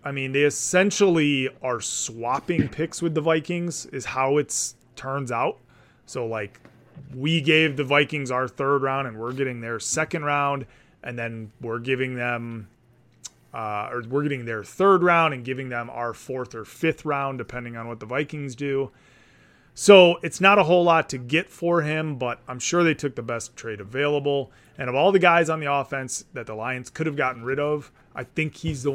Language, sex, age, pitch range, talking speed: English, male, 30-49, 120-150 Hz, 200 wpm